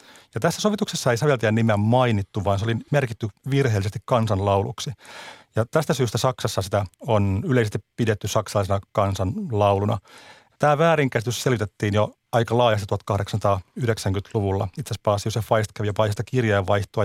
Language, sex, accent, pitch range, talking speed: Finnish, male, native, 105-120 Hz, 130 wpm